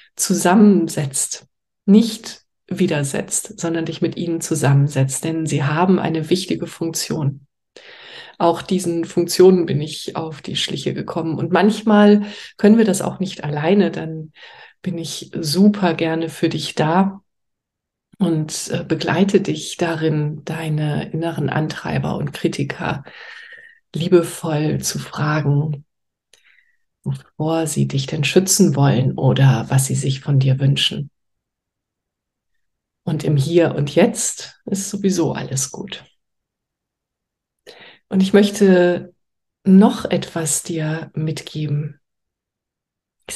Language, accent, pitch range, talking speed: German, German, 155-185 Hz, 110 wpm